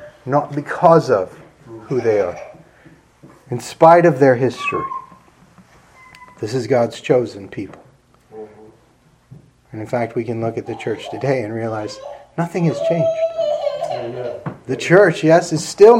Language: English